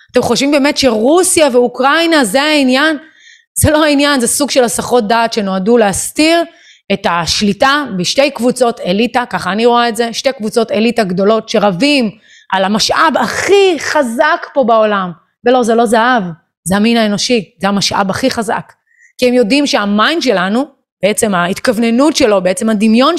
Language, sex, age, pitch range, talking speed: Hebrew, female, 30-49, 195-255 Hz, 155 wpm